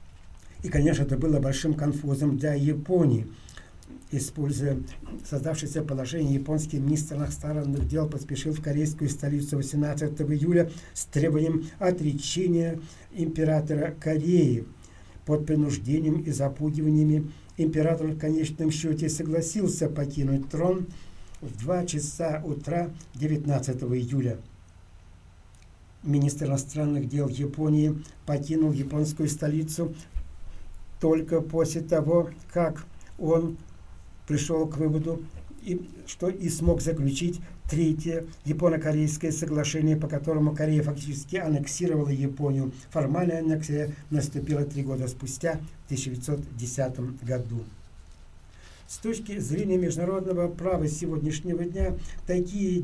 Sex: male